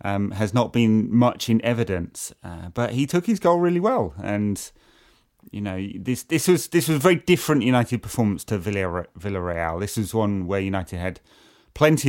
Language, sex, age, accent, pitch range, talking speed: English, male, 30-49, British, 90-115 Hz, 190 wpm